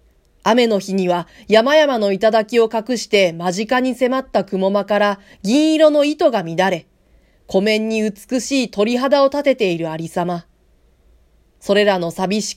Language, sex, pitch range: Japanese, female, 180-245 Hz